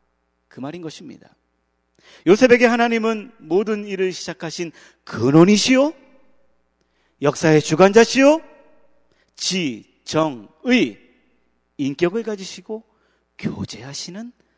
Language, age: Korean, 40-59